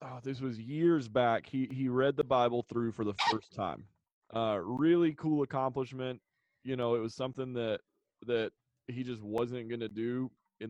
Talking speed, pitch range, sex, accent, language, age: 185 wpm, 115-145 Hz, male, American, English, 30-49